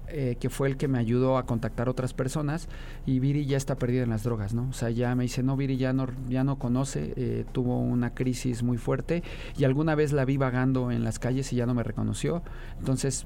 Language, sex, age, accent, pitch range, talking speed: Spanish, male, 40-59, Mexican, 120-140 Hz, 240 wpm